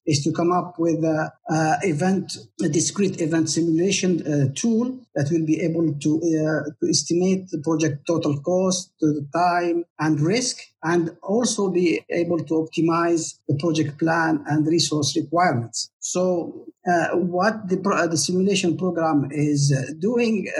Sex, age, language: male, 50-69, English